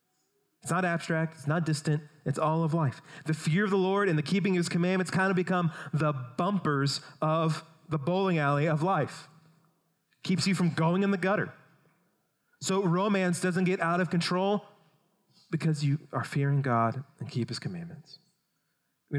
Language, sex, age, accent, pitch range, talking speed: English, male, 30-49, American, 140-175 Hz, 175 wpm